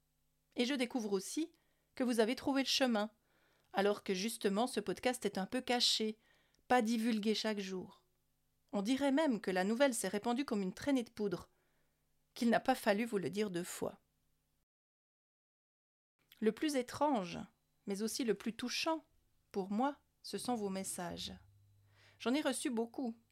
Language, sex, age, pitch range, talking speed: French, female, 40-59, 200-245 Hz, 160 wpm